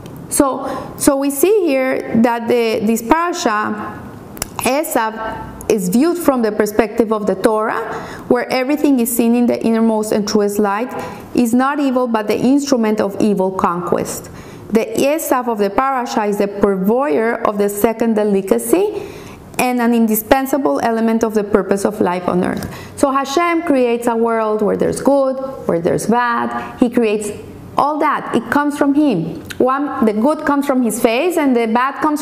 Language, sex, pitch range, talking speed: English, female, 220-275 Hz, 170 wpm